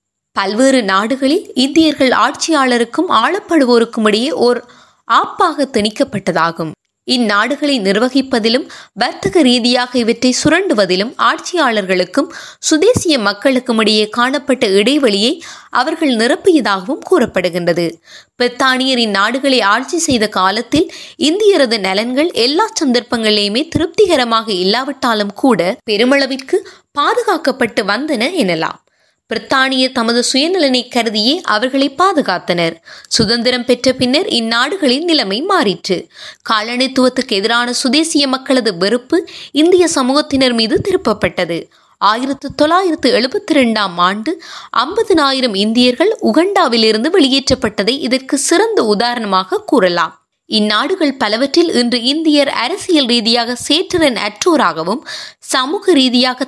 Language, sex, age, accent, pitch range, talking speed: Tamil, female, 20-39, native, 220-310 Hz, 90 wpm